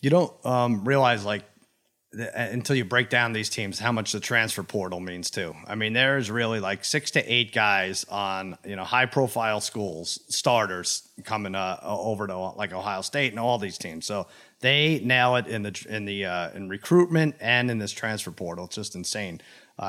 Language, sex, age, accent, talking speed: English, male, 30-49, American, 195 wpm